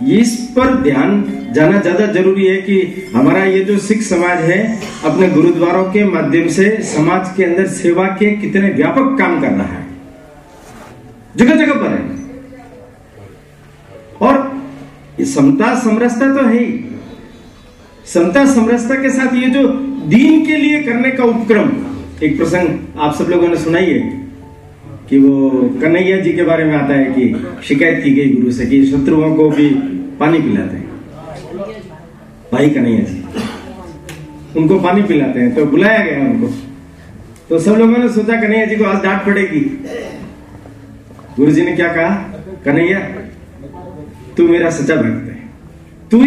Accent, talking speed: native, 150 wpm